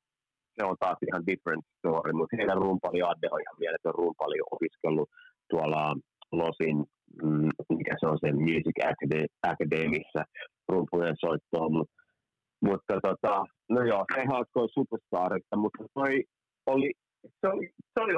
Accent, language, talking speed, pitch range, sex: native, Finnish, 130 wpm, 110-170 Hz, male